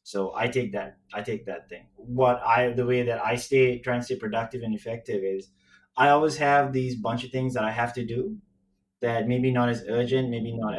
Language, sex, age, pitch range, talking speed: English, male, 20-39, 105-130 Hz, 230 wpm